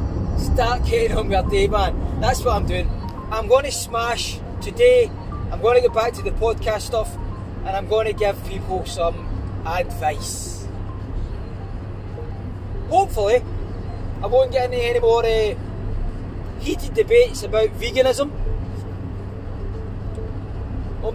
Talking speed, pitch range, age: 130 wpm, 90-110 Hz, 20-39